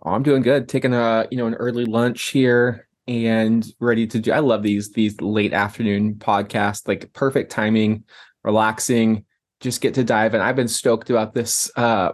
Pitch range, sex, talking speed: 110-135 Hz, male, 185 wpm